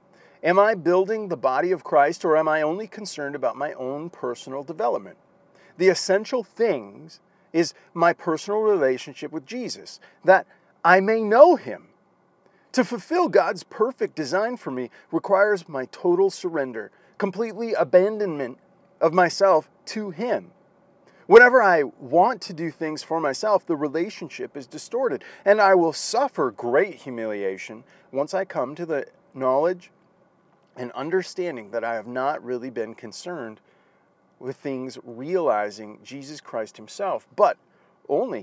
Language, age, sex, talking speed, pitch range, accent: English, 40-59, male, 140 wpm, 140-195 Hz, American